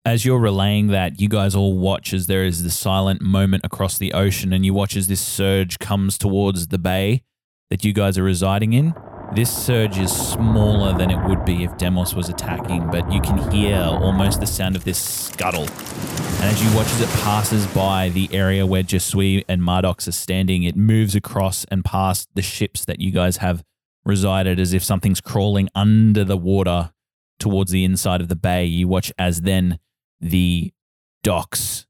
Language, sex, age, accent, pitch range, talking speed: English, male, 20-39, Australian, 90-100 Hz, 190 wpm